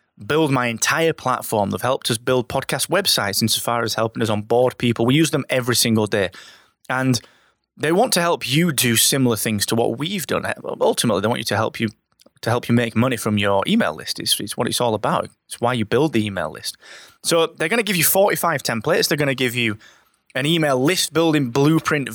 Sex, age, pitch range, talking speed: male, 20-39, 115-155 Hz, 220 wpm